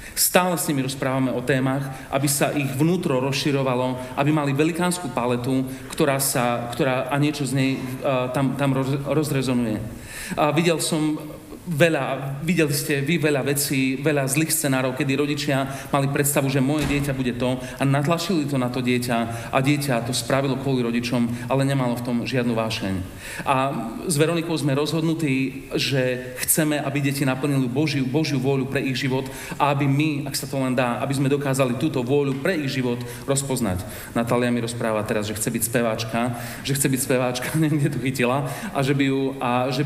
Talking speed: 175 wpm